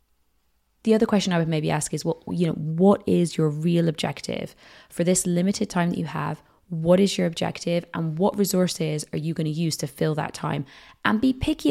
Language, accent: English, British